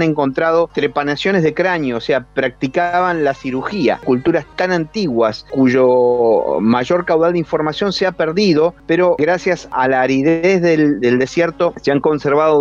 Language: Spanish